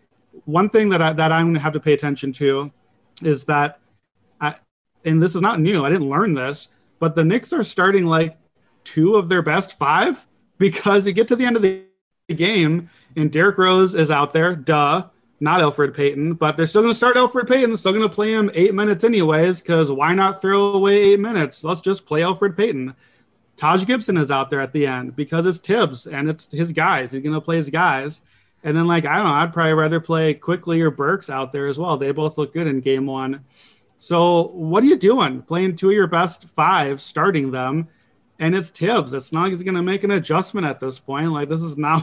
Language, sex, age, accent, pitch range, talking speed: English, male, 30-49, American, 150-185 Hz, 235 wpm